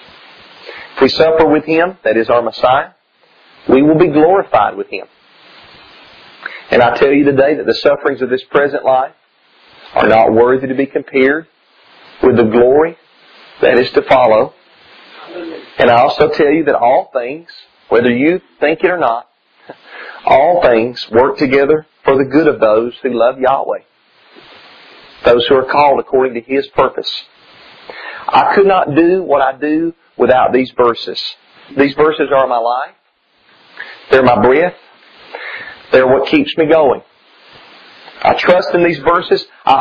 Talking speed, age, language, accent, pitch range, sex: 155 wpm, 40-59, English, American, 130-165 Hz, male